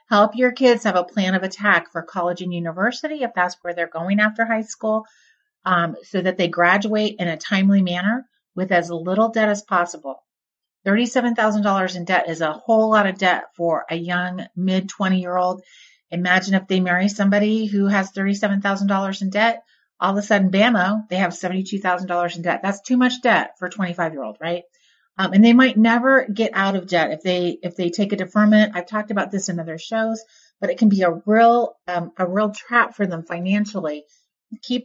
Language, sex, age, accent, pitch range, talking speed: English, female, 40-59, American, 180-220 Hz, 195 wpm